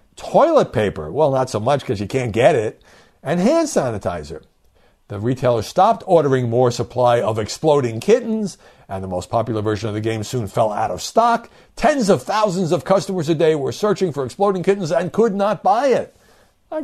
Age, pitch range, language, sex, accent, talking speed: 60-79, 95-135 Hz, English, male, American, 190 wpm